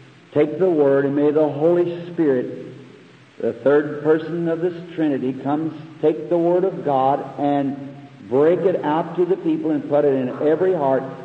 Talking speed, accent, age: 175 wpm, American, 60-79